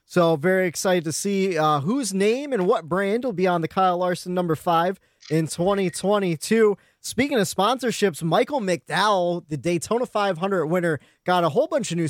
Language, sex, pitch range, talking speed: English, male, 155-195 Hz, 180 wpm